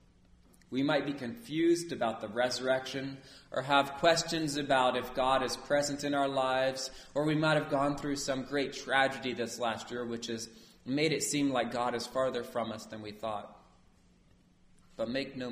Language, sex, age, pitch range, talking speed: English, male, 30-49, 100-135 Hz, 180 wpm